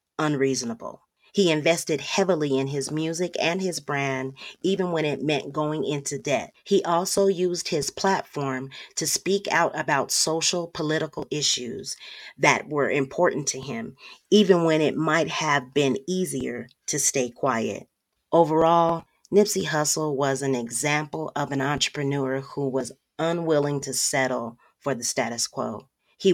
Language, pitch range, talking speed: English, 135-165 Hz, 145 wpm